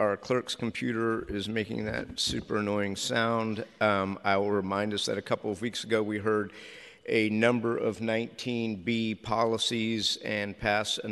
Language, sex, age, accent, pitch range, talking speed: English, male, 50-69, American, 100-110 Hz, 160 wpm